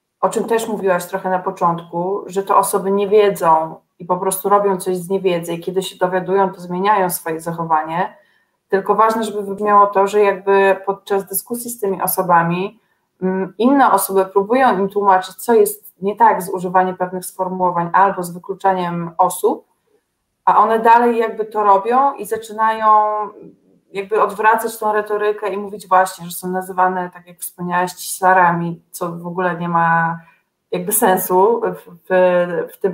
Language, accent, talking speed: Polish, native, 160 wpm